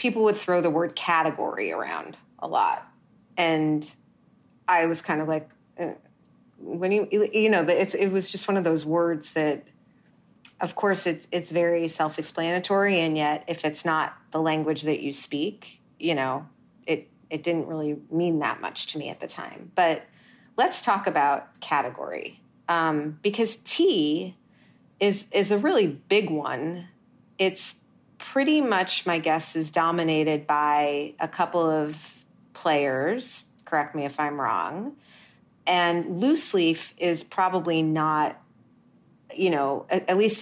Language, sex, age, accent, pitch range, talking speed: English, female, 30-49, American, 155-195 Hz, 145 wpm